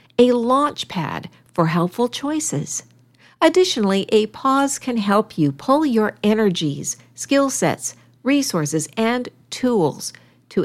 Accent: American